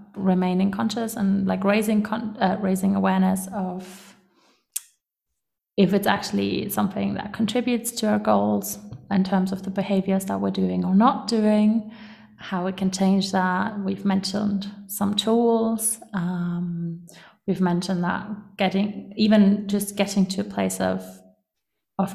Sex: female